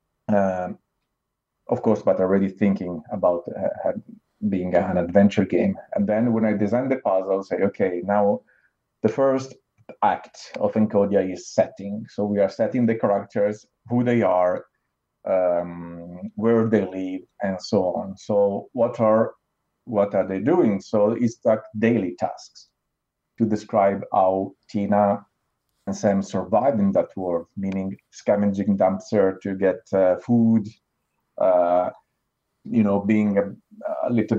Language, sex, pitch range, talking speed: English, male, 95-110 Hz, 140 wpm